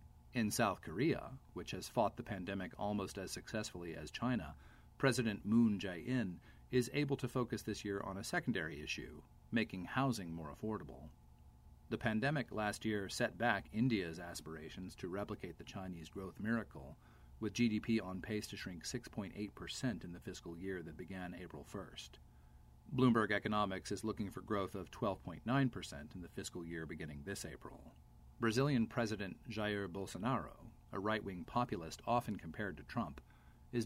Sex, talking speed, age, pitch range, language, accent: male, 150 wpm, 40-59, 80-110 Hz, English, American